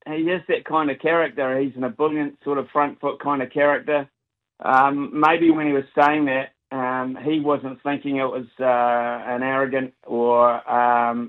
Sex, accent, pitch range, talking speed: male, Australian, 125-145 Hz, 180 wpm